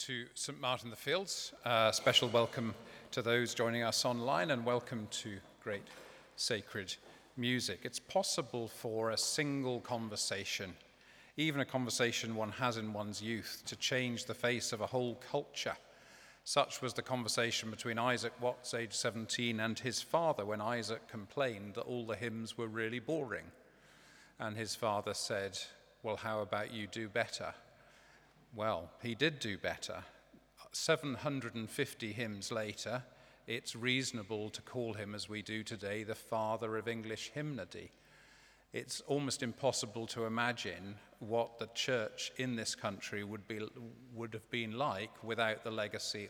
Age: 40-59